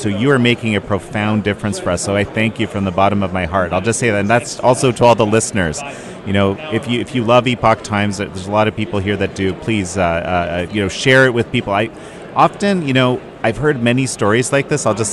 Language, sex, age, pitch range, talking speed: English, male, 30-49, 95-120 Hz, 270 wpm